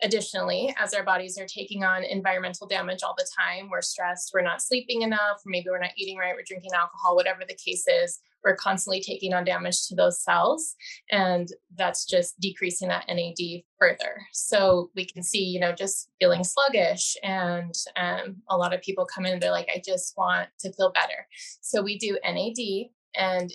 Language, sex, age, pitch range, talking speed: English, female, 20-39, 180-205 Hz, 195 wpm